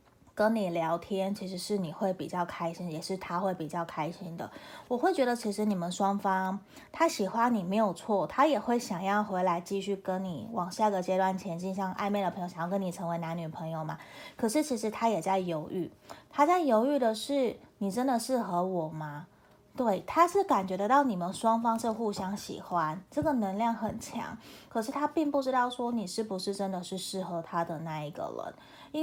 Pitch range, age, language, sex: 180-235 Hz, 20-39, Chinese, female